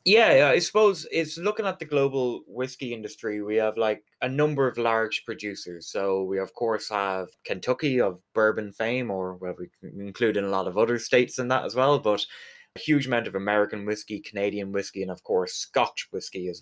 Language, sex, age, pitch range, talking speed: English, male, 20-39, 95-125 Hz, 205 wpm